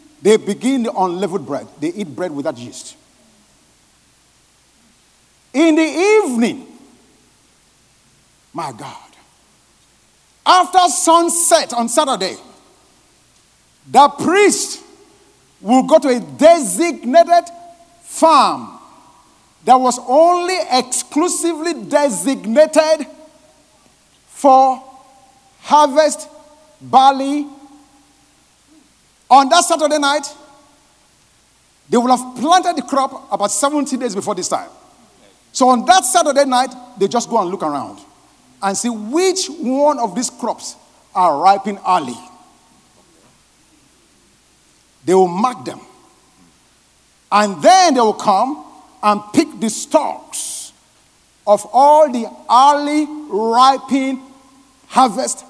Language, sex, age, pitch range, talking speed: English, male, 50-69, 250-320 Hz, 100 wpm